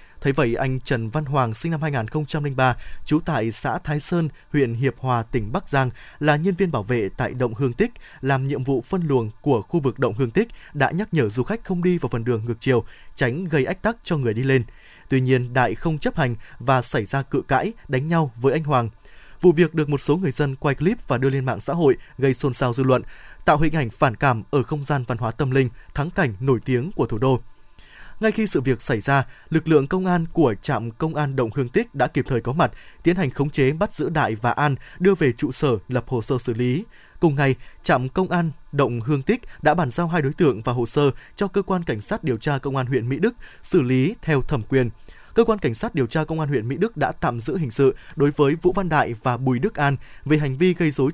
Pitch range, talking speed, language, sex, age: 125-160 Hz, 255 wpm, Vietnamese, male, 20-39